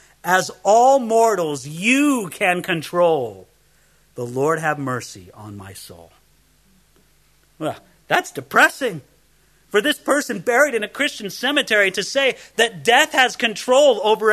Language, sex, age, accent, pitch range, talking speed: English, male, 40-59, American, 175-250 Hz, 130 wpm